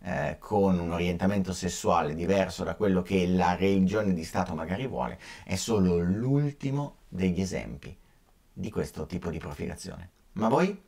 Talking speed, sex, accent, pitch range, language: 145 wpm, male, native, 90-130 Hz, Italian